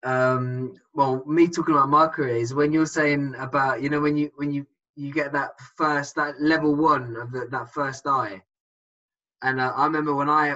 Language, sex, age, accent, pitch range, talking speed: English, male, 20-39, British, 130-160 Hz, 205 wpm